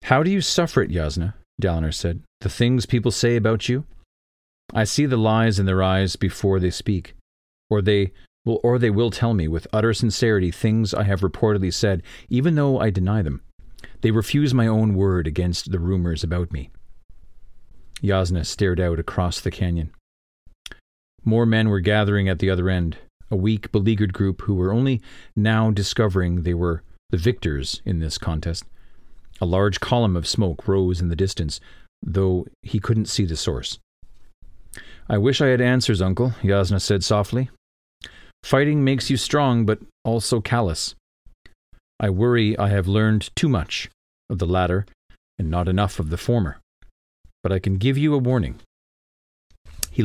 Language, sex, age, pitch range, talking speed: English, male, 40-59, 90-110 Hz, 170 wpm